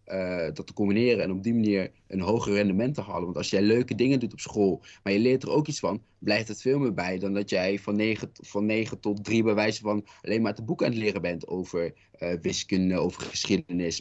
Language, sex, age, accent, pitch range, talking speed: Dutch, male, 20-39, Dutch, 95-110 Hz, 245 wpm